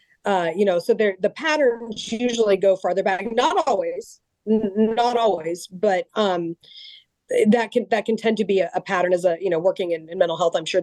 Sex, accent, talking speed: female, American, 215 wpm